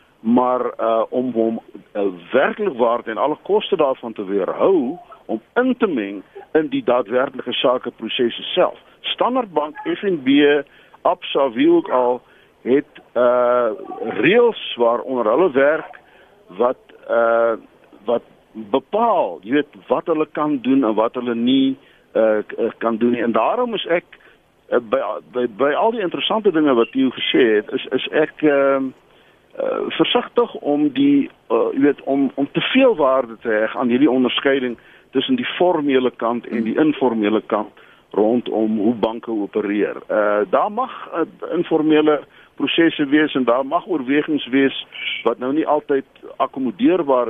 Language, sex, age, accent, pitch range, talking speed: Dutch, male, 50-69, Dutch, 115-180 Hz, 145 wpm